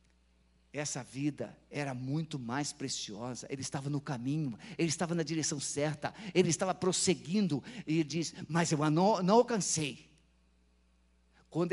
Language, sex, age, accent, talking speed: Portuguese, male, 50-69, Brazilian, 140 wpm